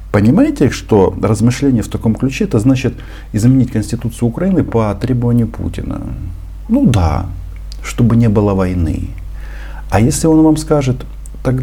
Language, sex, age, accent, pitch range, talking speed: Russian, male, 50-69, native, 90-120 Hz, 135 wpm